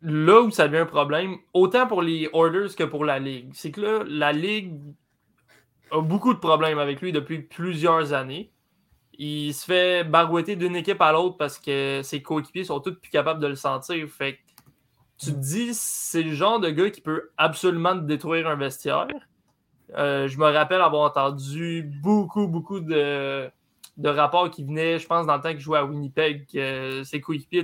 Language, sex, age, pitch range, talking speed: French, male, 20-39, 140-175 Hz, 190 wpm